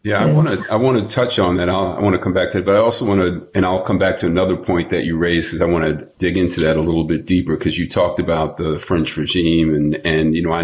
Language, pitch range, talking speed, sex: English, 80-95 Hz, 315 wpm, male